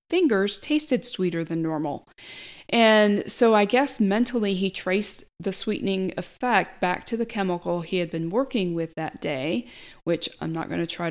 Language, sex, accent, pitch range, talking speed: English, female, American, 175-210 Hz, 175 wpm